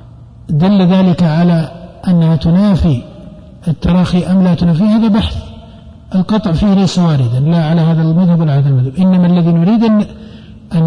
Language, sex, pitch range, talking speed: Arabic, male, 155-195 Hz, 145 wpm